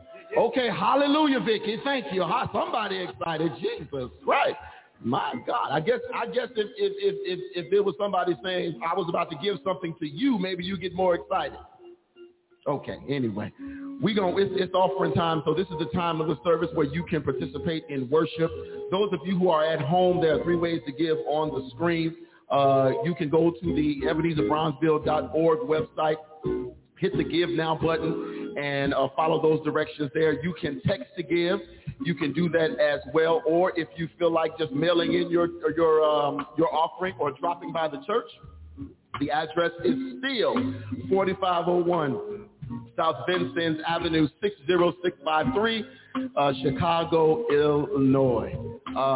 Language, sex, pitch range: English, male, 155-185 Hz